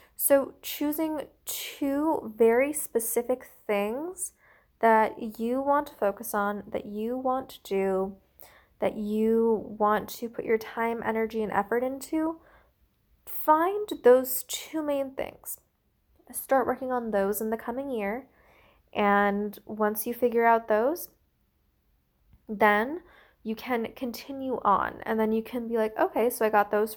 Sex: female